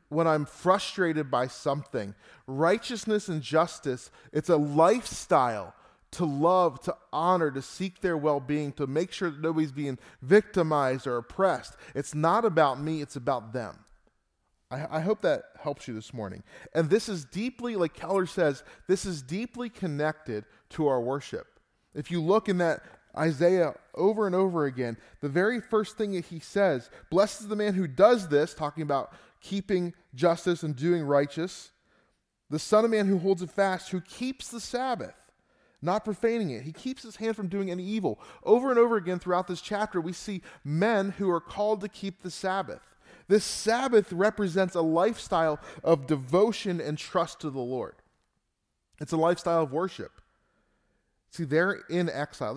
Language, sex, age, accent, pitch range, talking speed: English, male, 20-39, American, 145-195 Hz, 170 wpm